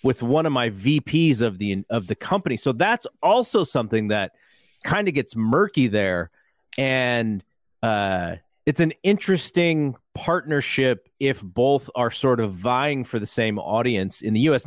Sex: male